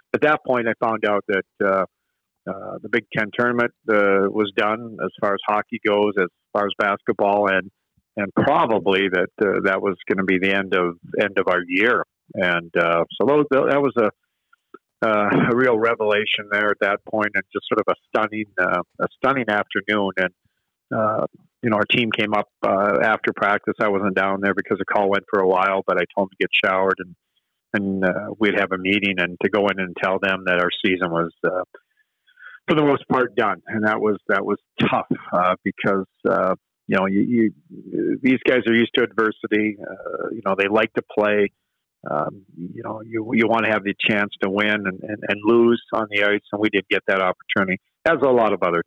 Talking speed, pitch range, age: 215 wpm, 95-115 Hz, 50-69